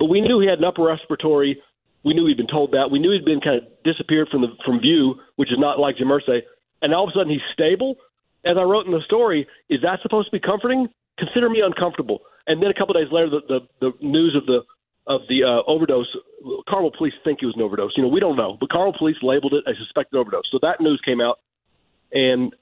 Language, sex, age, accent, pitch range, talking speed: English, male, 40-59, American, 130-165 Hz, 255 wpm